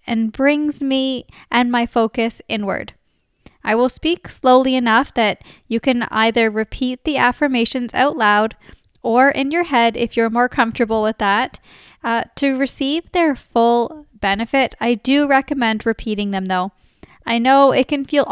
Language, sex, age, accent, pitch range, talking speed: English, female, 10-29, American, 220-265 Hz, 155 wpm